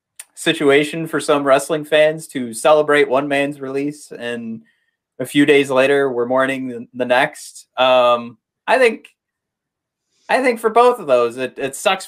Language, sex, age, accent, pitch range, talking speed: English, male, 30-49, American, 130-175 Hz, 155 wpm